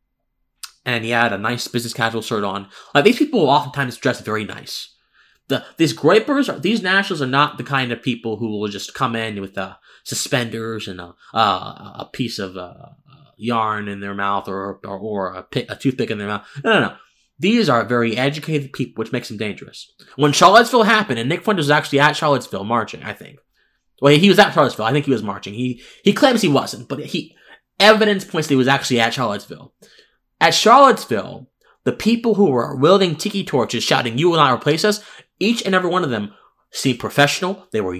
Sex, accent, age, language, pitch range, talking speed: male, American, 20-39, English, 120-185 Hz, 210 wpm